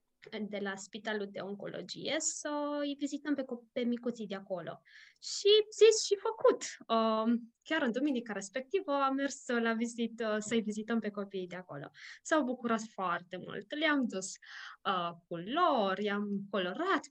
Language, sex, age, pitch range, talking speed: Romanian, female, 20-39, 220-340 Hz, 145 wpm